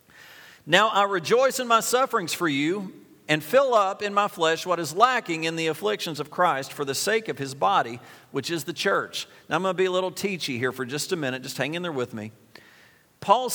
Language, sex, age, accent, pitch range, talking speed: English, male, 50-69, American, 160-225 Hz, 230 wpm